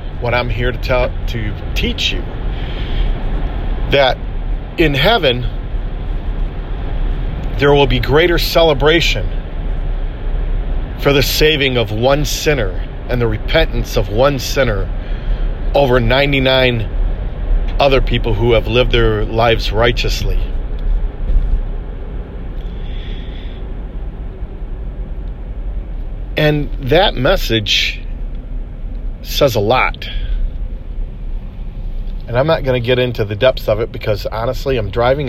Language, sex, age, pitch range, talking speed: English, male, 50-69, 80-120 Hz, 100 wpm